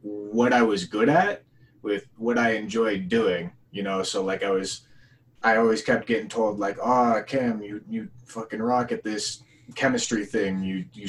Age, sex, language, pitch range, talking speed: 20-39, male, English, 100-130 Hz, 190 wpm